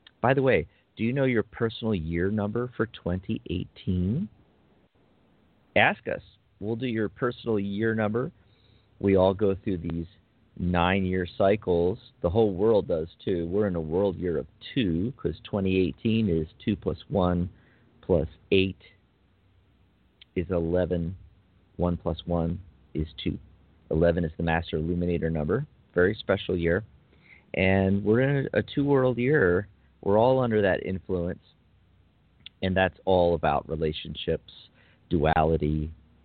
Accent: American